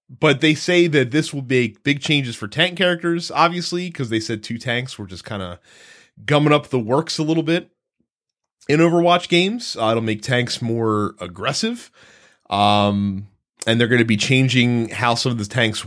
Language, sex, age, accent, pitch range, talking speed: English, male, 30-49, American, 110-145 Hz, 190 wpm